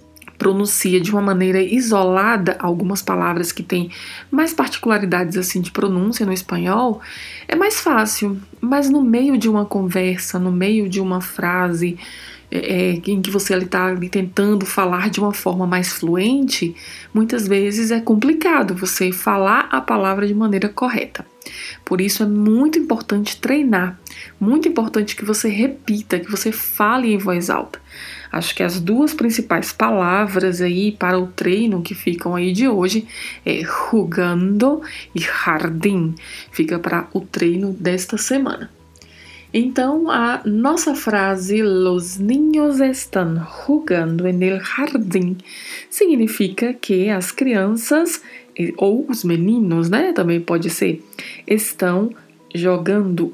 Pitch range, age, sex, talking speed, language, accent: 180-230 Hz, 20-39, female, 135 wpm, Portuguese, Brazilian